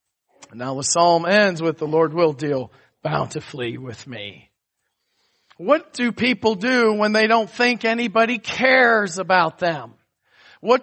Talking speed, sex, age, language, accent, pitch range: 145 wpm, male, 40-59, English, American, 150-195 Hz